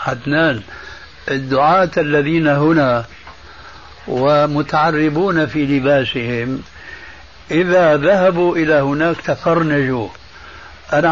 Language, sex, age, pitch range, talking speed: Arabic, male, 60-79, 130-170 Hz, 70 wpm